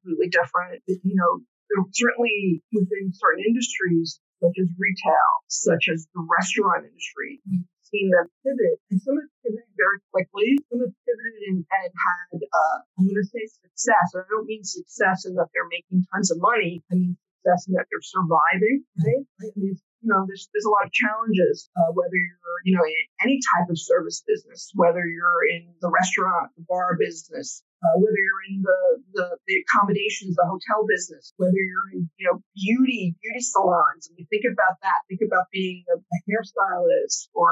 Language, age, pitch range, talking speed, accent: English, 50-69, 175-225 Hz, 180 wpm, American